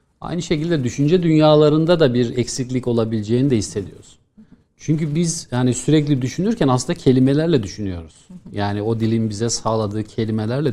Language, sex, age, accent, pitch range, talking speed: Turkish, male, 50-69, native, 110-145 Hz, 135 wpm